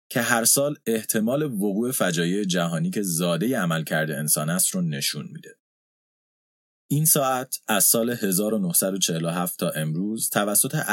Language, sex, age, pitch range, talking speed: Persian, male, 30-49, 90-145 Hz, 125 wpm